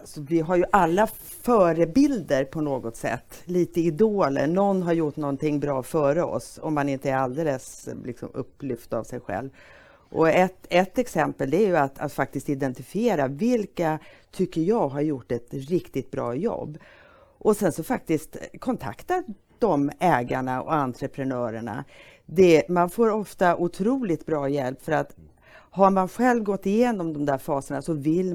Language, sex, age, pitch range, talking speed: Swedish, female, 40-59, 140-185 Hz, 150 wpm